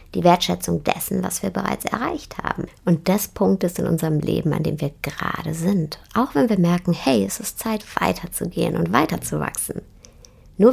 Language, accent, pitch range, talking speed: German, German, 165-235 Hz, 180 wpm